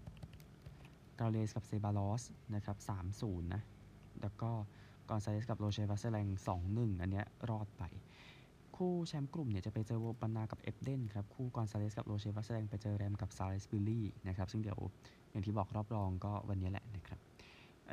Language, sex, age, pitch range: Thai, male, 20-39, 100-115 Hz